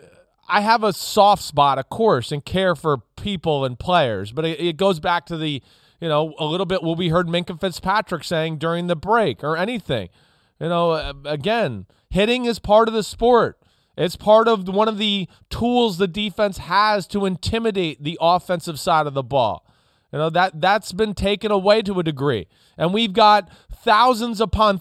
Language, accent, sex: English, American, male